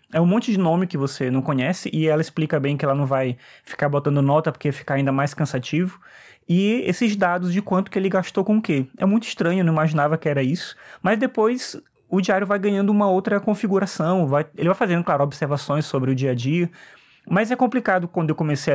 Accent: Brazilian